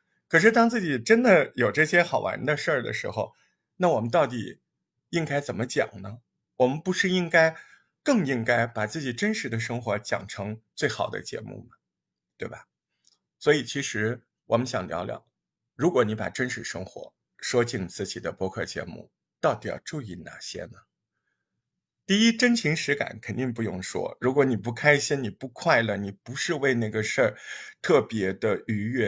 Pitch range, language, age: 115-165 Hz, Chinese, 50-69